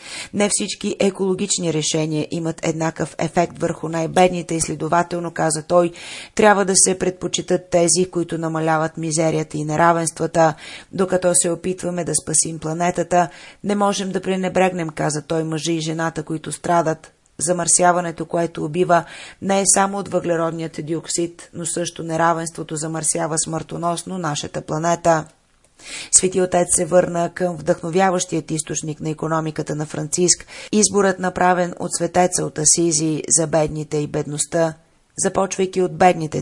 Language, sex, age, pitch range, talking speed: Bulgarian, female, 30-49, 160-180 Hz, 130 wpm